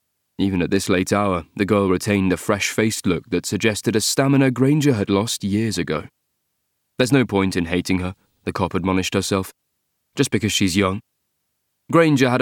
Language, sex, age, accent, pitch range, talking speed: English, male, 30-49, British, 95-130 Hz, 175 wpm